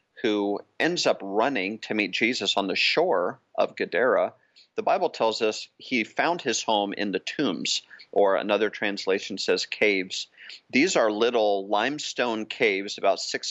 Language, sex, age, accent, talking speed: English, male, 40-59, American, 155 wpm